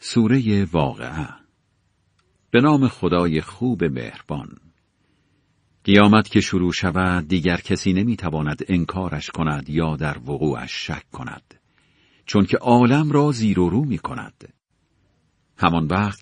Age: 50-69